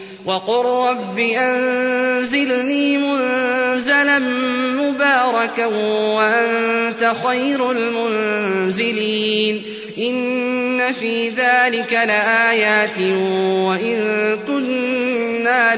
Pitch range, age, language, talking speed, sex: 215-255 Hz, 20-39, Arabic, 55 wpm, male